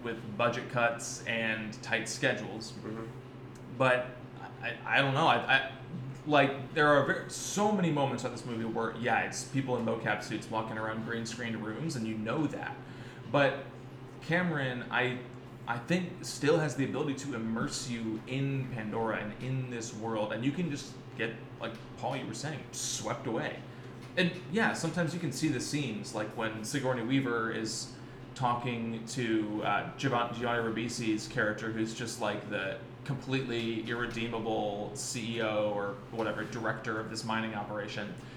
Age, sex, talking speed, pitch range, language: 20-39, male, 155 wpm, 115-135 Hz, English